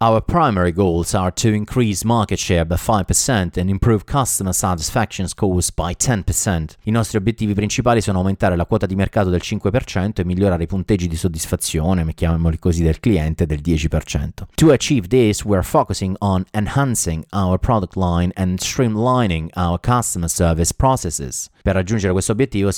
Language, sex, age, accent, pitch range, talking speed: Italian, male, 30-49, native, 90-110 Hz, 165 wpm